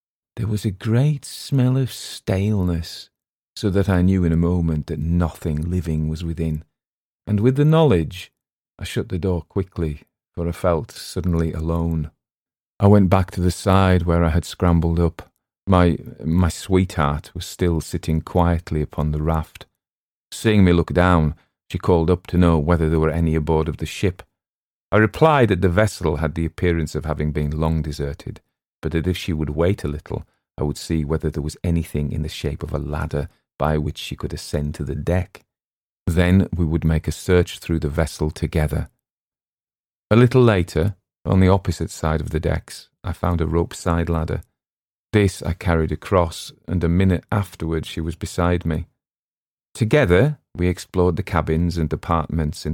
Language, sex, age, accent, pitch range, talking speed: English, male, 40-59, British, 80-95 Hz, 180 wpm